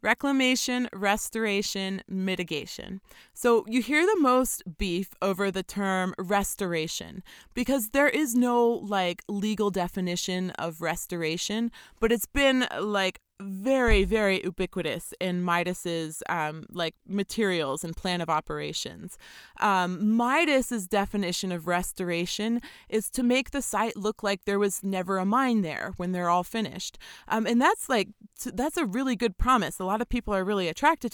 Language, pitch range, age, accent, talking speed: English, 180-230 Hz, 30-49, American, 145 wpm